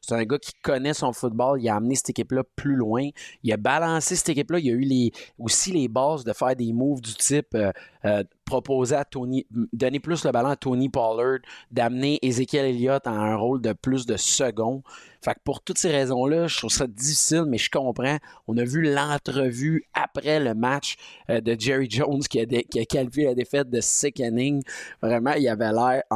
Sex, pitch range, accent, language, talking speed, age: male, 115-140 Hz, Canadian, French, 210 wpm, 30-49